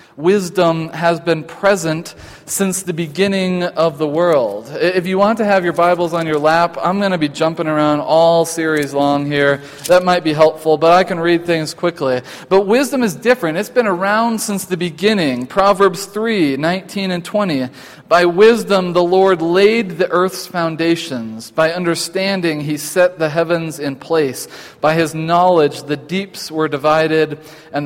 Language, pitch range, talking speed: English, 150-185 Hz, 170 wpm